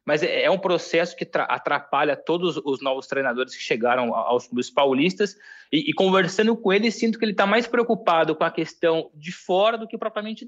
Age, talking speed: 20-39, 195 wpm